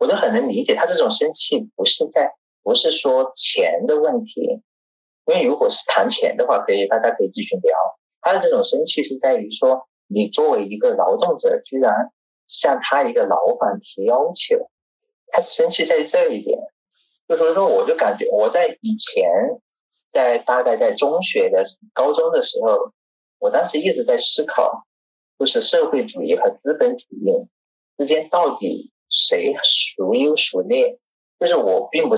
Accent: native